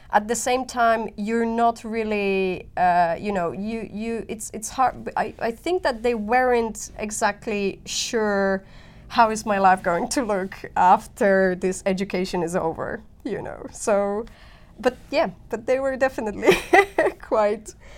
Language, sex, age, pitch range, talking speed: English, female, 20-39, 185-230 Hz, 150 wpm